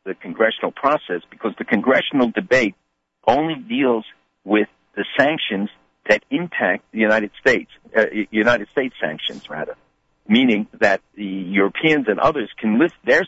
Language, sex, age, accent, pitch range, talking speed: English, male, 60-79, American, 90-115 Hz, 140 wpm